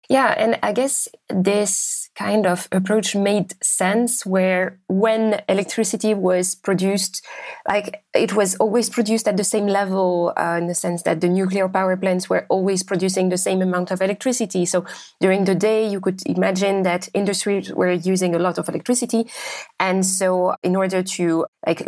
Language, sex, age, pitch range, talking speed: English, female, 20-39, 180-210 Hz, 170 wpm